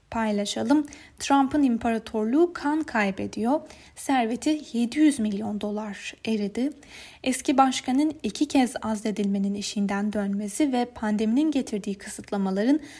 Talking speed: 95 wpm